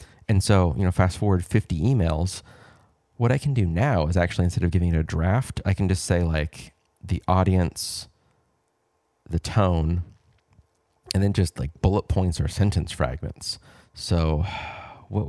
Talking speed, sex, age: 160 wpm, male, 30-49